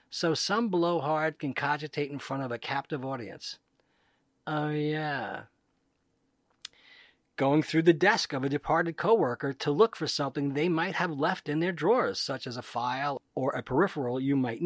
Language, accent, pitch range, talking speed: English, American, 140-190 Hz, 170 wpm